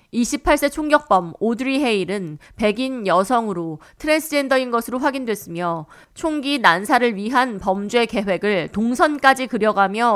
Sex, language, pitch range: female, Korean, 195-265 Hz